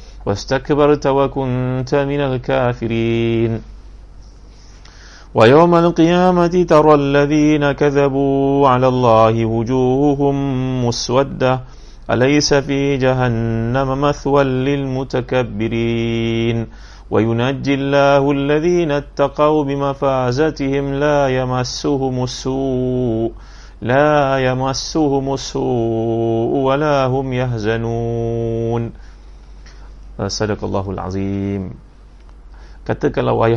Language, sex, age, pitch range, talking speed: Malay, male, 30-49, 110-135 Hz, 65 wpm